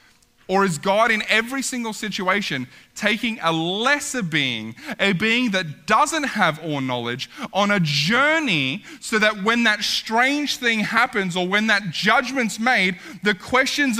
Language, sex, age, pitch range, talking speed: English, male, 20-39, 170-245 Hz, 150 wpm